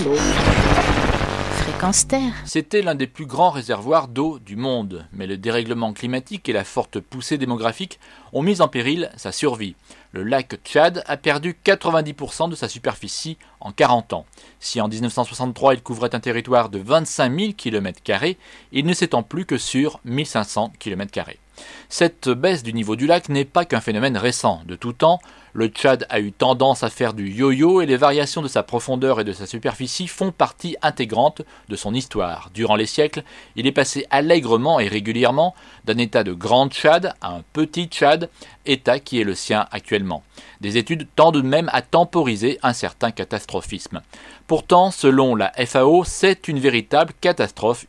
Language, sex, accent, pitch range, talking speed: French, male, French, 115-155 Hz, 170 wpm